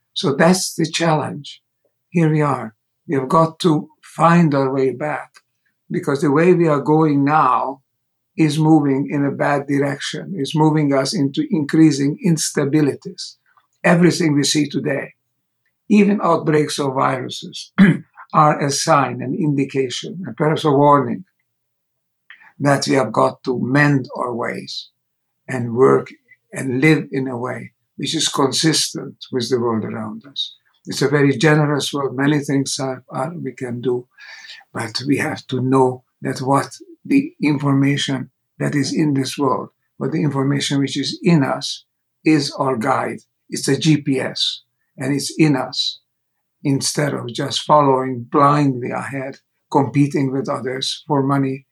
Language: English